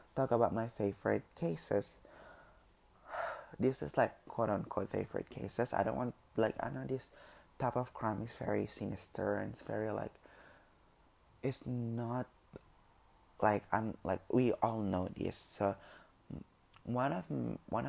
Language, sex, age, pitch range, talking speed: English, male, 20-39, 100-120 Hz, 140 wpm